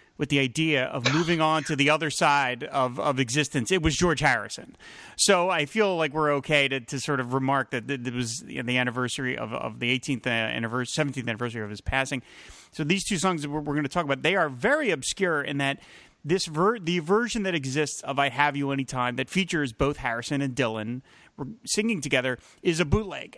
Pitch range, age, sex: 125-155 Hz, 30-49, male